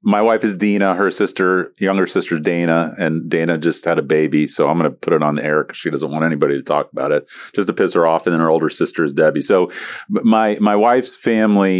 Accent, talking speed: American, 255 wpm